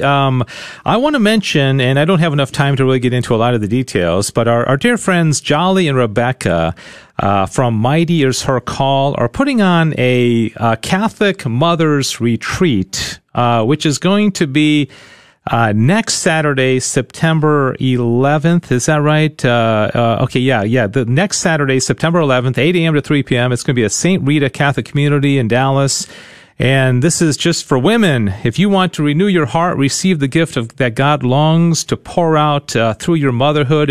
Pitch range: 120-155 Hz